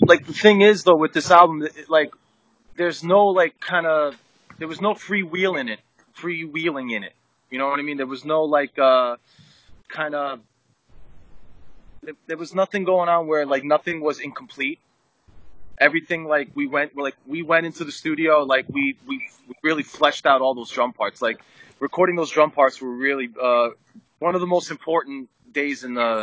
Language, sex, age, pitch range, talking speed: English, male, 20-39, 135-175 Hz, 195 wpm